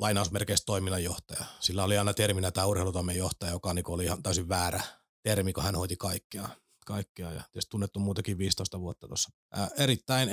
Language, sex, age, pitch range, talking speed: Finnish, male, 30-49, 90-105 Hz, 170 wpm